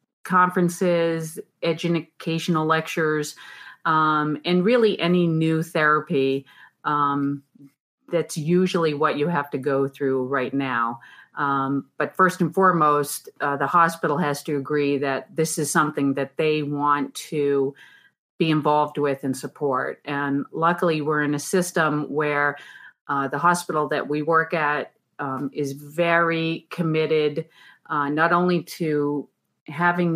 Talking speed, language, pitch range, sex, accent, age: 135 wpm, English, 145-170 Hz, female, American, 40-59